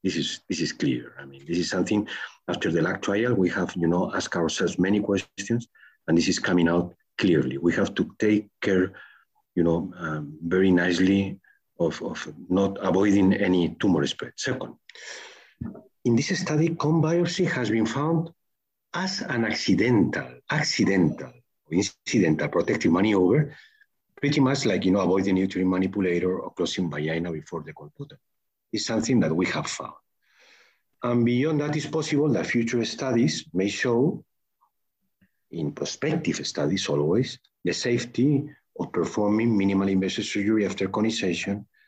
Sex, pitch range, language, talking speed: male, 90-120 Hz, English, 150 wpm